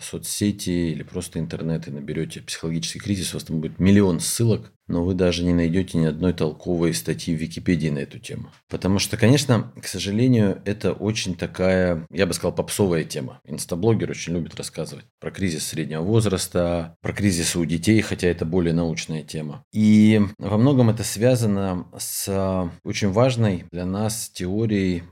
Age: 40-59